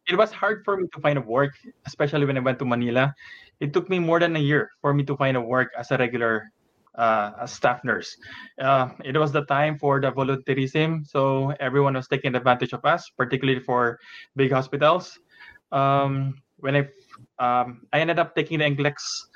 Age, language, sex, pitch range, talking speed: 20-39, English, male, 130-150 Hz, 200 wpm